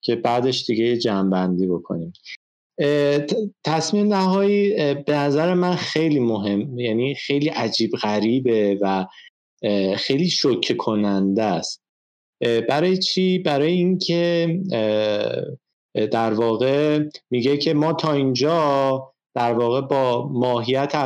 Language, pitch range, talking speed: Persian, 110-155 Hz, 105 wpm